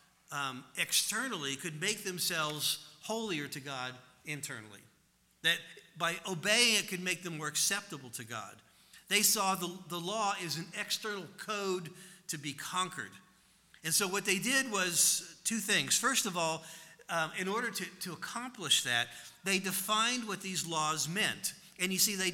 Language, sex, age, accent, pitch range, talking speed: English, male, 50-69, American, 160-205 Hz, 160 wpm